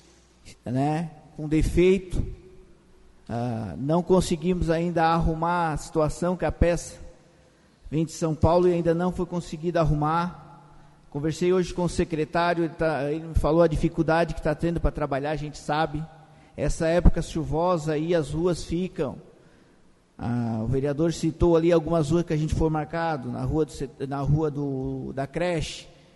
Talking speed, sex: 150 wpm, male